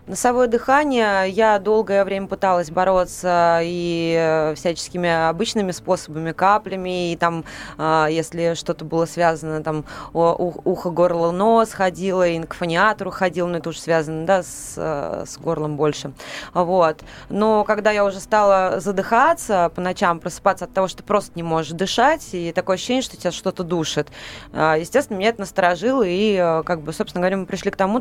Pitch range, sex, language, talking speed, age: 170-200 Hz, female, Russian, 155 wpm, 20-39